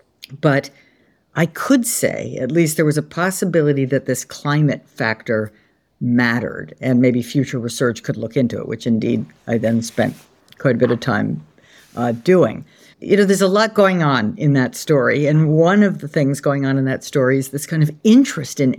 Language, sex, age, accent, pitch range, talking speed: English, female, 50-69, American, 130-160 Hz, 195 wpm